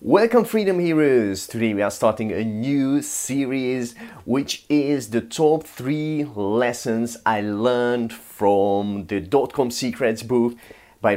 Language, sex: English, male